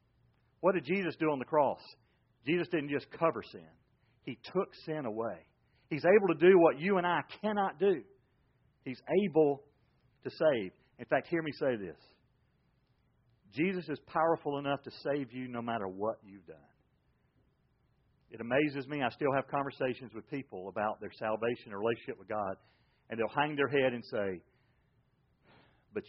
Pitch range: 115-155 Hz